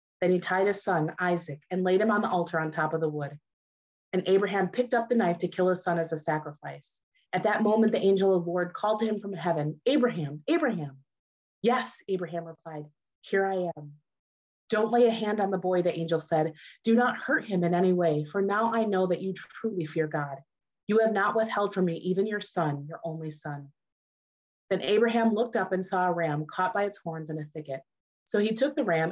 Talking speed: 225 wpm